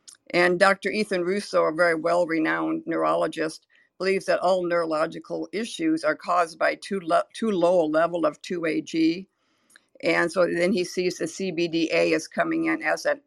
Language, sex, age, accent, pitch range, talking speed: English, female, 50-69, American, 165-195 Hz, 165 wpm